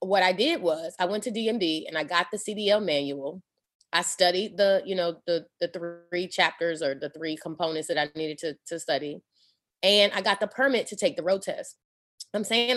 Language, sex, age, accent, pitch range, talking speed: English, female, 20-39, American, 165-210 Hz, 210 wpm